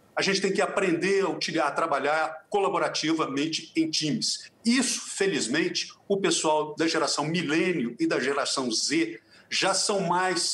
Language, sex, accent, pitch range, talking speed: Portuguese, male, Brazilian, 150-195 Hz, 135 wpm